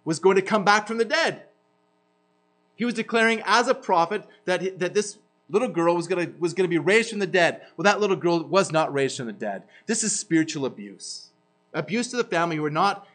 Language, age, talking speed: English, 30-49, 220 wpm